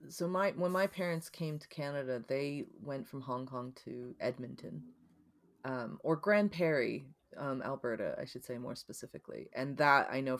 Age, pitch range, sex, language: 30-49, 125-150 Hz, female, English